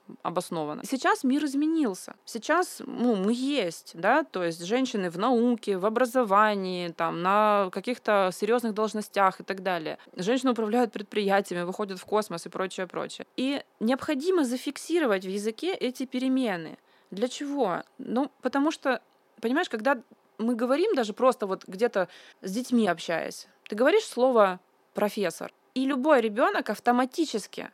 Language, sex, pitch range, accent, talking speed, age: Russian, female, 205-270 Hz, native, 140 wpm, 20-39